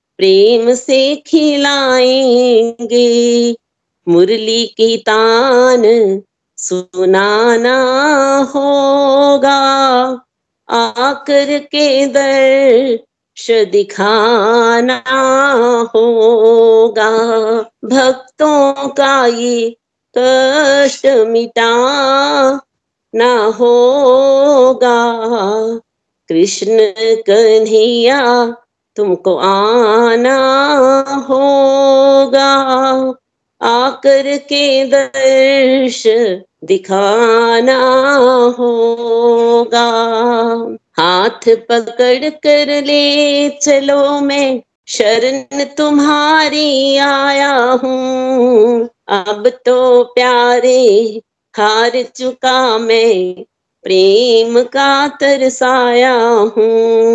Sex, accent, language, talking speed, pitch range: female, native, Hindi, 55 wpm, 230-275 Hz